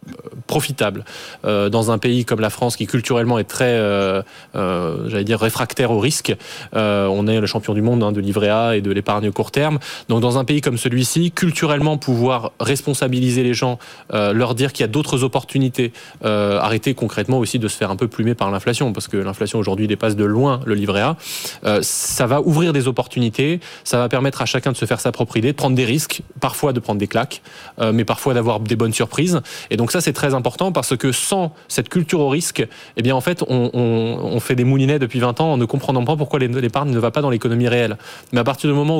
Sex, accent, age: male, French, 20-39